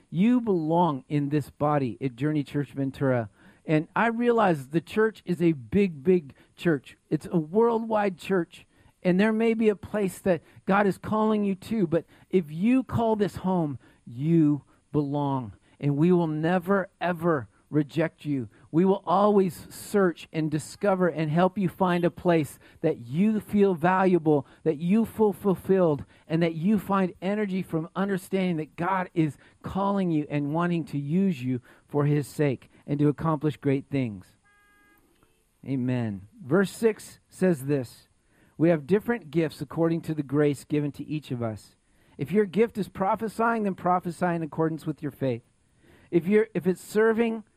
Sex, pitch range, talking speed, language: male, 145-195 Hz, 165 wpm, English